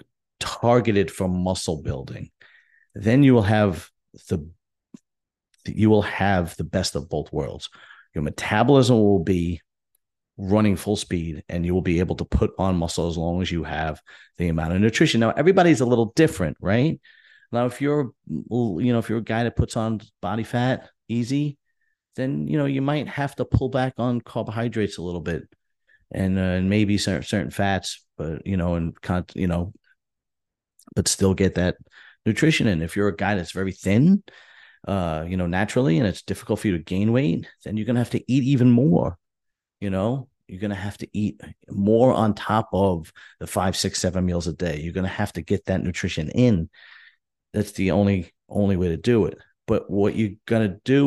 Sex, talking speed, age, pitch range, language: male, 190 wpm, 40-59, 90-115 Hz, English